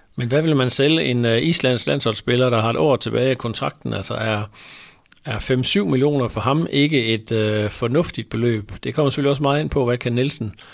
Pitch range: 110-130 Hz